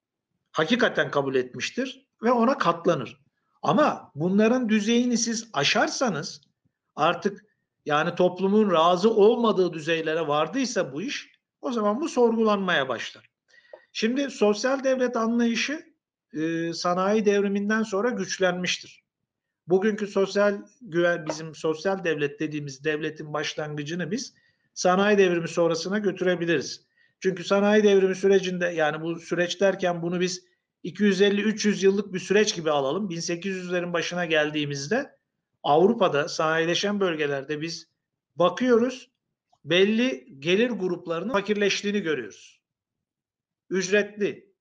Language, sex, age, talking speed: Turkish, male, 50-69, 105 wpm